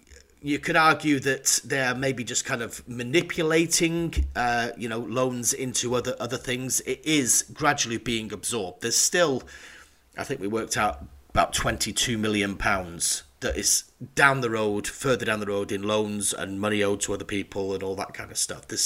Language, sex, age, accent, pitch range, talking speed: English, male, 30-49, British, 100-135 Hz, 180 wpm